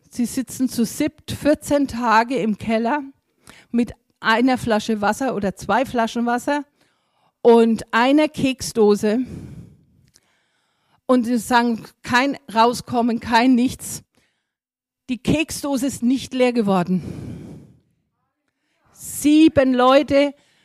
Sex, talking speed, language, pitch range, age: female, 100 wpm, German, 230-275 Hz, 50-69